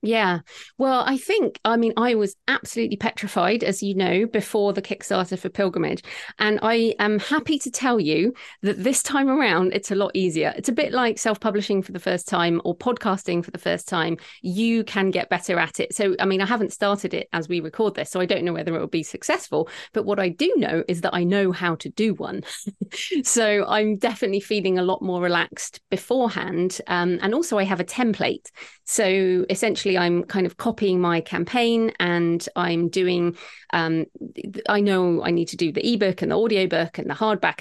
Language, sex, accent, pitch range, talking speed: English, female, British, 175-220 Hz, 205 wpm